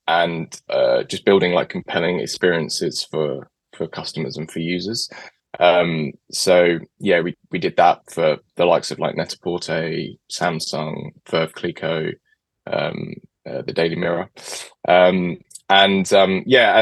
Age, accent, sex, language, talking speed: 20-39, British, male, English, 135 wpm